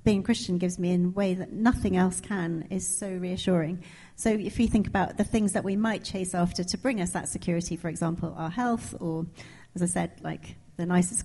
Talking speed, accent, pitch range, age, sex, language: 225 wpm, British, 180-220 Hz, 40-59, female, English